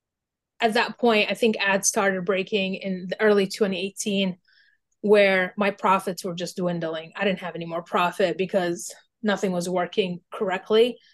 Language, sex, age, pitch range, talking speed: English, female, 20-39, 190-230 Hz, 155 wpm